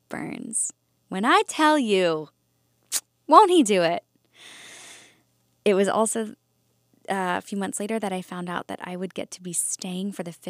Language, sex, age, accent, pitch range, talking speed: English, female, 10-29, American, 155-190 Hz, 165 wpm